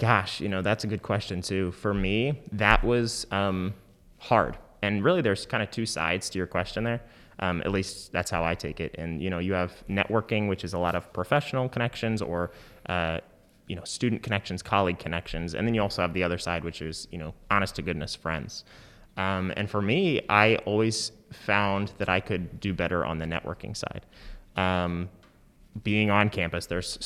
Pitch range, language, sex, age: 85-105 Hz, English, male, 20-39